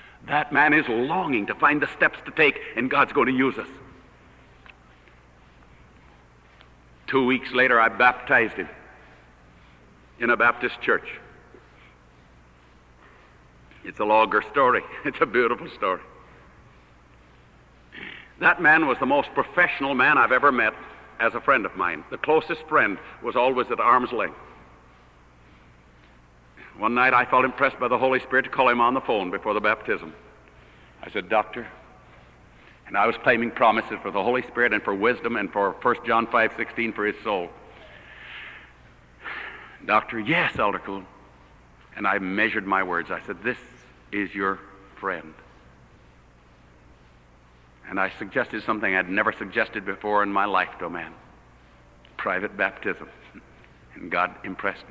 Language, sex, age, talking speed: English, male, 60-79, 145 wpm